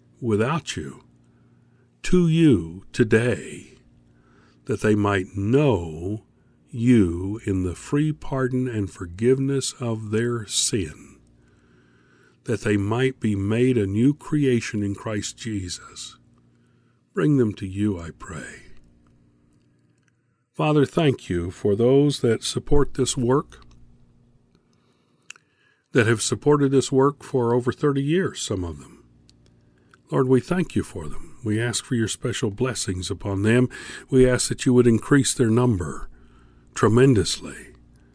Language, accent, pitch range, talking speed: English, American, 90-125 Hz, 125 wpm